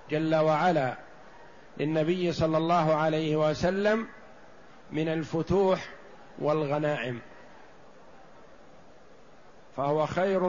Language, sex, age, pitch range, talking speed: Arabic, male, 50-69, 155-185 Hz, 70 wpm